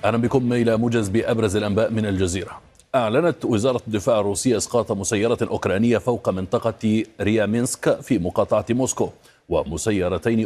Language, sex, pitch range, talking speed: Arabic, male, 100-120 Hz, 125 wpm